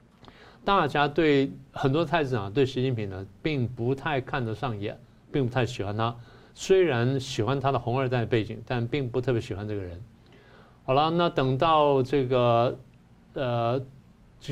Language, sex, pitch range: Chinese, male, 115-150 Hz